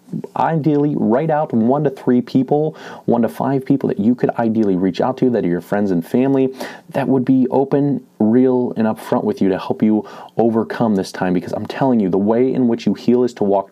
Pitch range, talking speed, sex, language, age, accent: 100-130 Hz, 230 wpm, male, English, 30-49, American